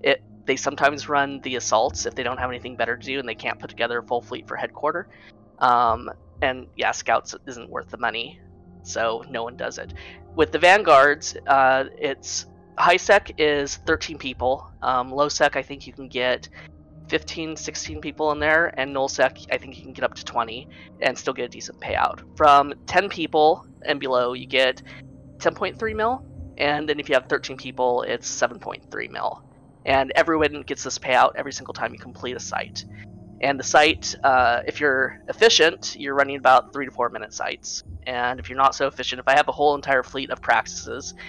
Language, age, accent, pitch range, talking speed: English, 20-39, American, 120-145 Hz, 200 wpm